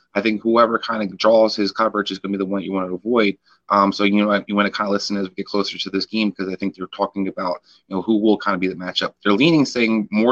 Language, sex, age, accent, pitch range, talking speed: English, male, 30-49, American, 95-105 Hz, 315 wpm